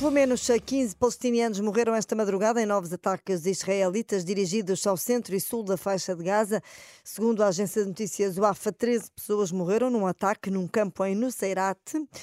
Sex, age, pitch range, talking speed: female, 20-39, 185-225 Hz, 175 wpm